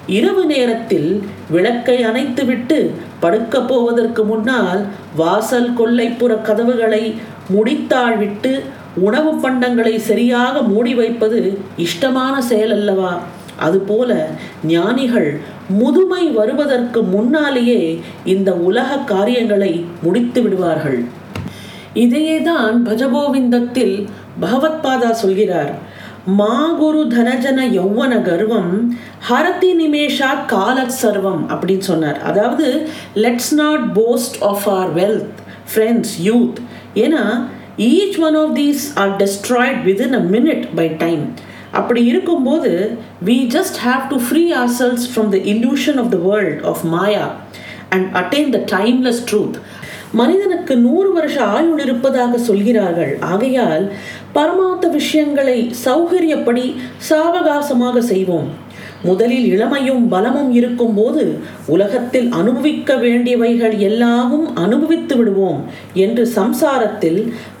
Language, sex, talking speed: Tamil, female, 55 wpm